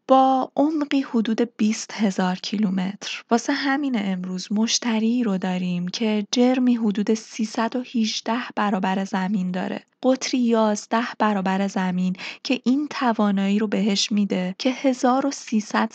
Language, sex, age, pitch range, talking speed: Persian, female, 20-39, 195-245 Hz, 115 wpm